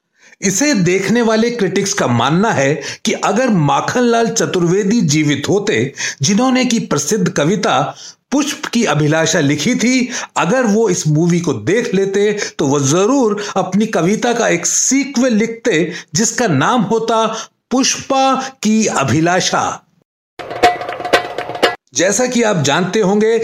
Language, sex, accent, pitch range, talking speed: Hindi, male, native, 175-235 Hz, 125 wpm